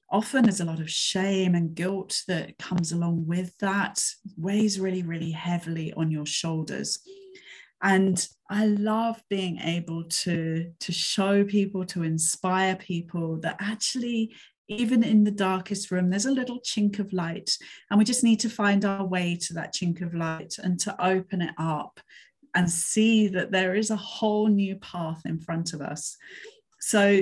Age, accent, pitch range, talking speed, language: 30-49, British, 175-215 Hz, 170 wpm, English